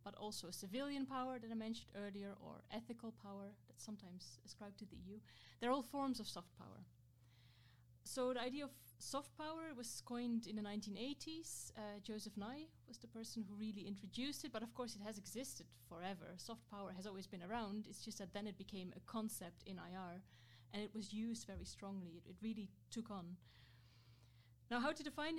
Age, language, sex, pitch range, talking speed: 30-49, English, female, 180-230 Hz, 195 wpm